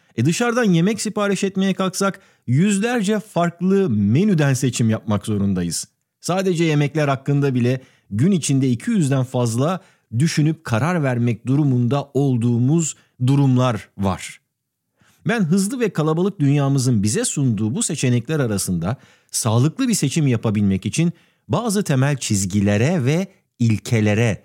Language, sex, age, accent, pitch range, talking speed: Turkish, male, 50-69, native, 105-160 Hz, 115 wpm